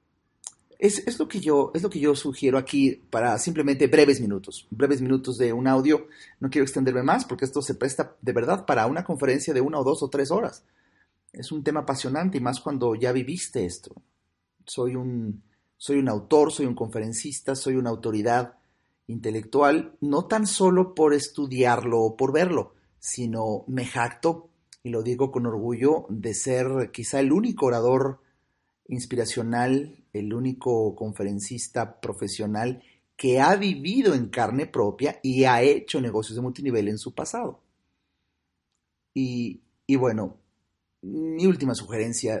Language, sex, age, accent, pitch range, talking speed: Spanish, male, 40-59, Mexican, 115-140 Hz, 155 wpm